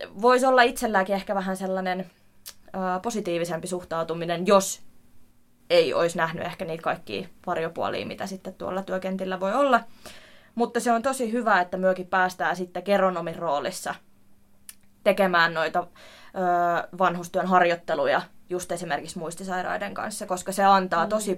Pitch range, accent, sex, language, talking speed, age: 175-195 Hz, native, female, Finnish, 125 wpm, 20-39